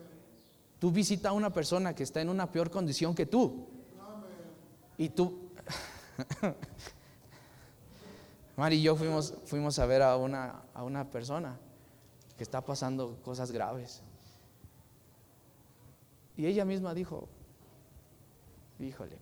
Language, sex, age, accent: Spanish, male, 30-49, Mexican